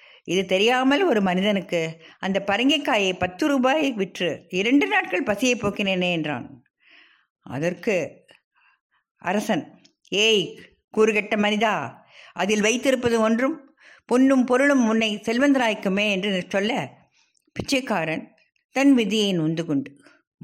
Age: 60-79